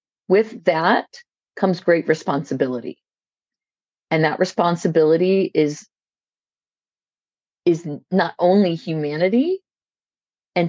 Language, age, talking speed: English, 40-59, 80 wpm